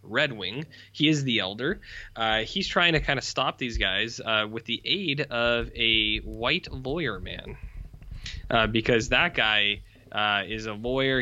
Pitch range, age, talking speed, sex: 105-125 Hz, 20-39, 170 wpm, male